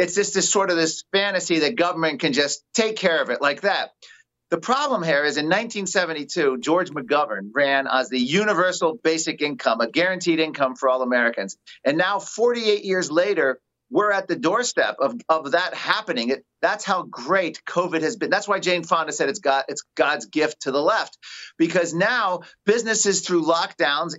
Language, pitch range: English, 155-200 Hz